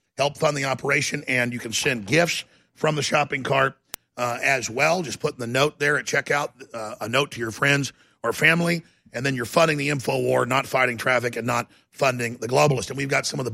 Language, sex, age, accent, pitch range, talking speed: English, male, 50-69, American, 125-150 Hz, 235 wpm